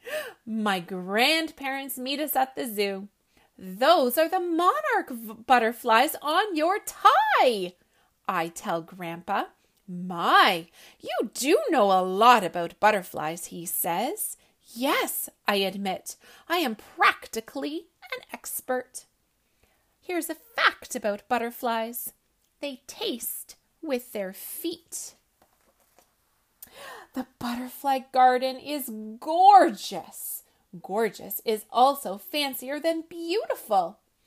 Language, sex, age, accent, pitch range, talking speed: English, female, 30-49, American, 205-305 Hz, 100 wpm